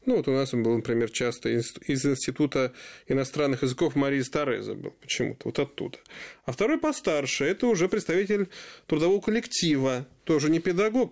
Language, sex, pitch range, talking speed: Russian, male, 130-190 Hz, 160 wpm